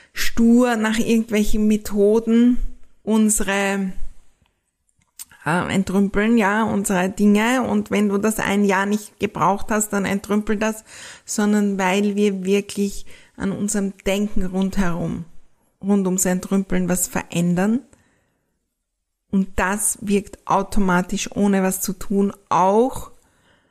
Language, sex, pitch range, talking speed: German, female, 195-225 Hz, 110 wpm